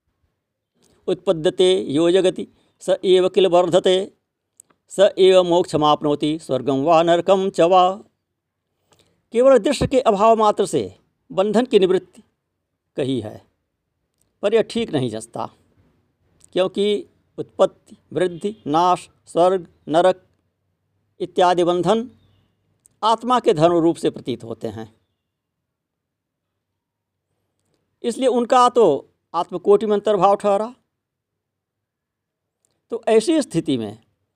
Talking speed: 100 wpm